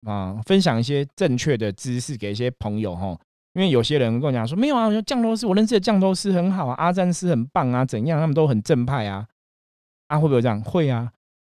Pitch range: 105-140 Hz